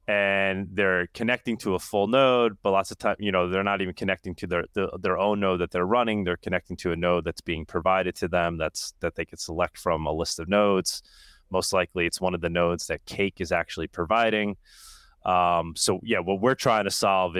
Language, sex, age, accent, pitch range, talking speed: English, male, 30-49, American, 90-120 Hz, 230 wpm